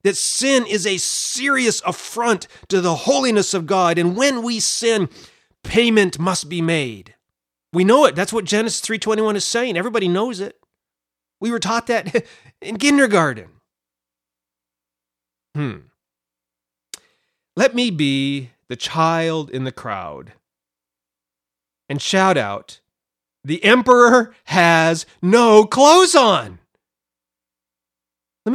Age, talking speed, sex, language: 30-49, 120 wpm, male, English